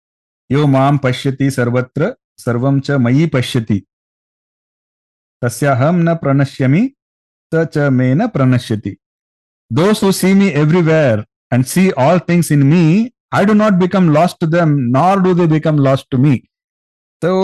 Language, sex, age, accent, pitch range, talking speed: English, male, 50-69, Indian, 120-170 Hz, 115 wpm